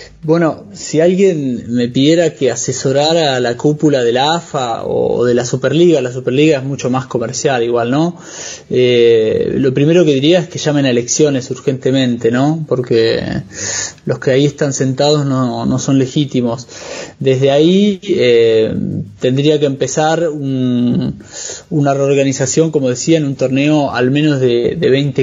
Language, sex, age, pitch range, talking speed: Portuguese, male, 20-39, 130-155 Hz, 155 wpm